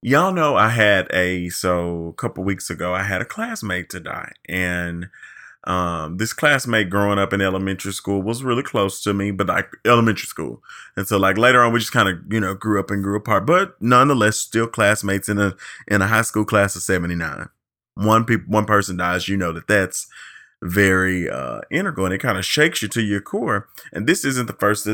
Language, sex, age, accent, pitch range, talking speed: English, male, 30-49, American, 95-115 Hz, 215 wpm